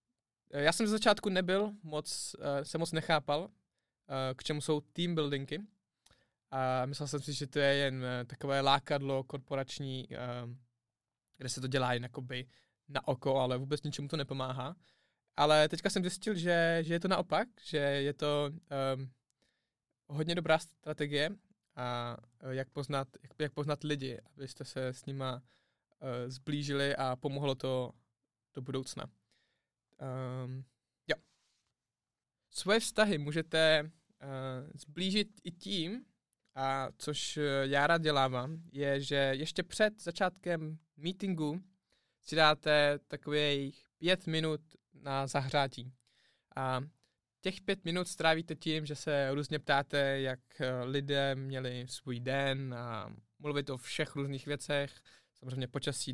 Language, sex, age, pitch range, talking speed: Czech, male, 20-39, 130-160 Hz, 125 wpm